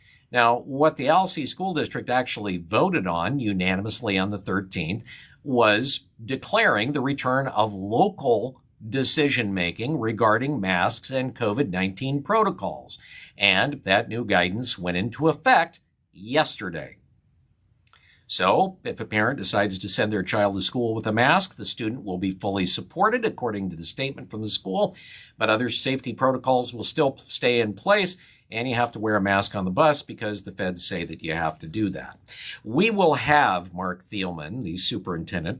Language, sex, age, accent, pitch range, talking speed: English, male, 50-69, American, 95-135 Hz, 165 wpm